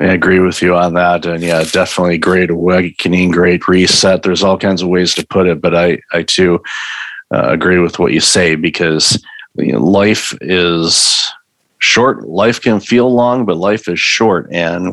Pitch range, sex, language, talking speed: 85-100 Hz, male, English, 175 wpm